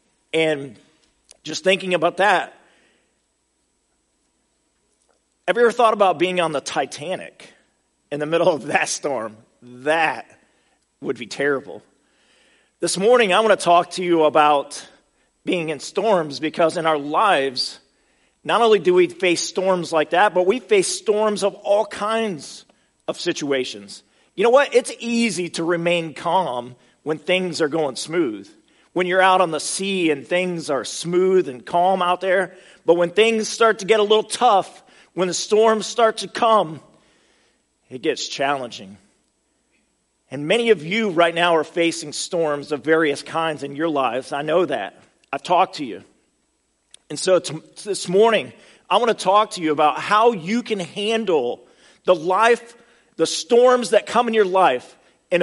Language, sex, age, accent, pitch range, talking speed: English, male, 40-59, American, 160-215 Hz, 160 wpm